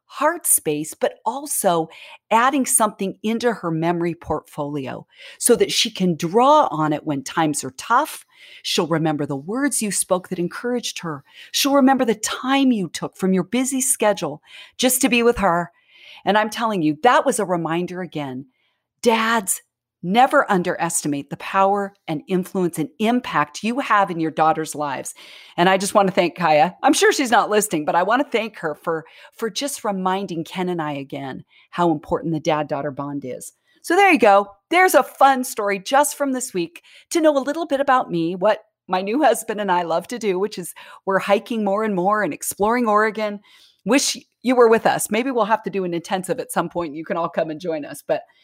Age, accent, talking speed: 40-59, American, 200 wpm